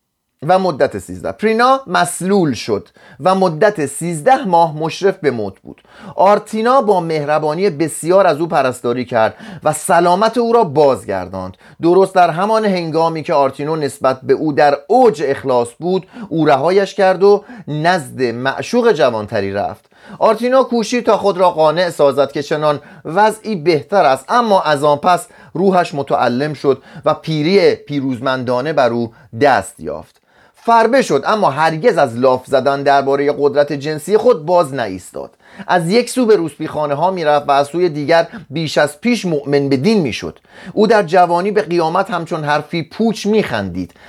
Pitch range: 140-195 Hz